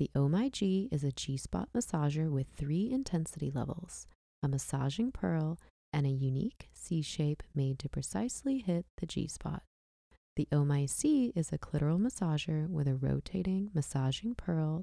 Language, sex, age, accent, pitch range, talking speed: English, female, 20-39, American, 145-195 Hz, 155 wpm